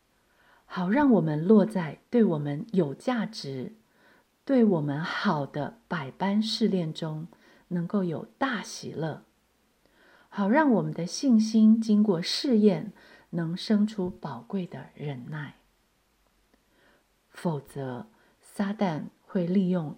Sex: female